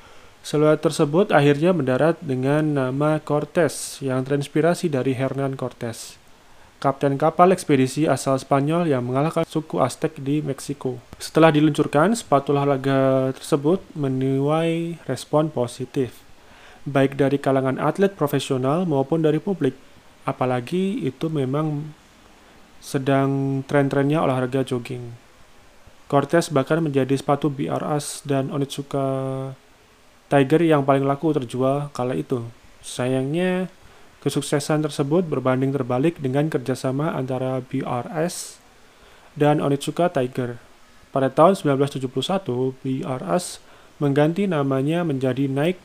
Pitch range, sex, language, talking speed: 130-155 Hz, male, Indonesian, 105 wpm